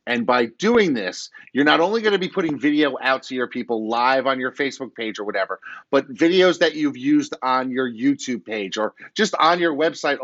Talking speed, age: 210 wpm, 30-49